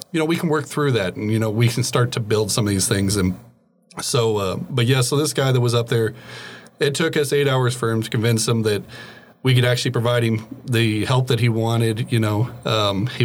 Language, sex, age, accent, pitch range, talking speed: English, male, 40-59, American, 105-120 Hz, 255 wpm